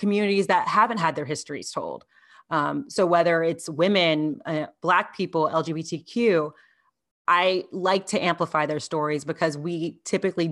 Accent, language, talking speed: American, English, 145 wpm